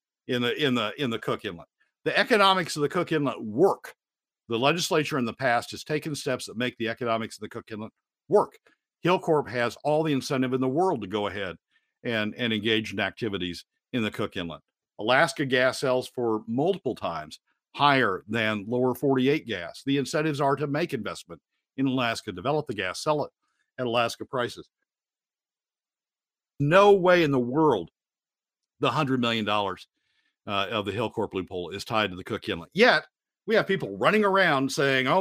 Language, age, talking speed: English, 50-69, 180 wpm